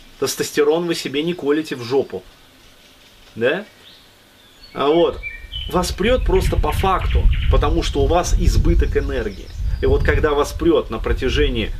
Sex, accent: male, native